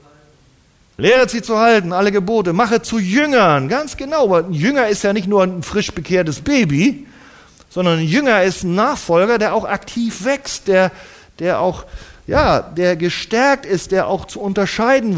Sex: male